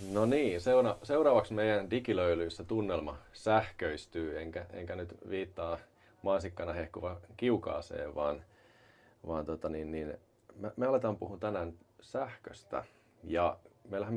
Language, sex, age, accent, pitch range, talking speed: Finnish, male, 30-49, native, 85-105 Hz, 115 wpm